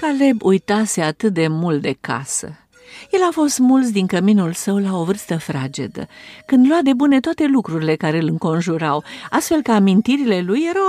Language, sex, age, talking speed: Romanian, female, 50-69, 175 wpm